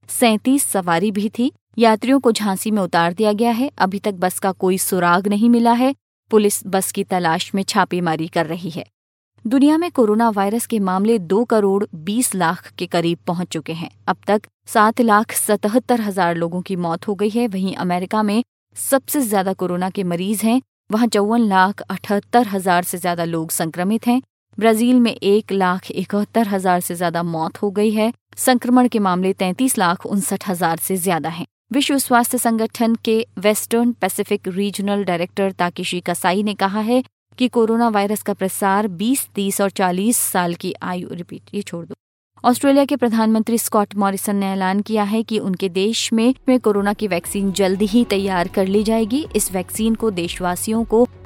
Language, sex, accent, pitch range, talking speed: Hindi, female, native, 185-230 Hz, 180 wpm